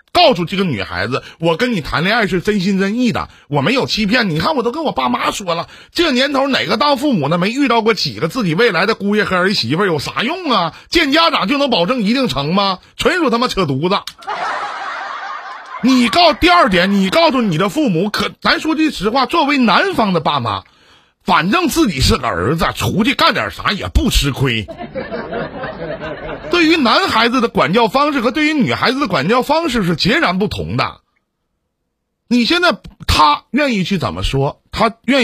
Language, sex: Chinese, male